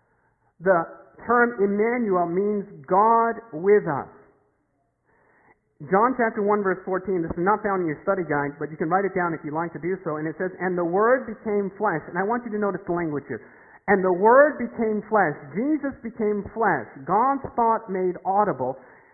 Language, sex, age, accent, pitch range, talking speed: English, male, 50-69, American, 185-235 Hz, 190 wpm